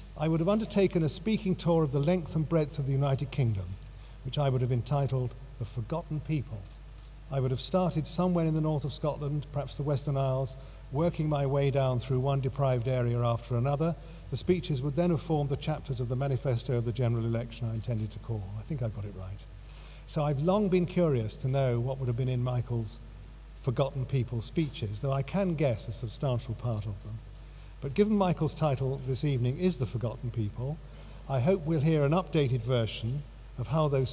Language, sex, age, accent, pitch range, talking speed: English, male, 50-69, British, 120-155 Hz, 205 wpm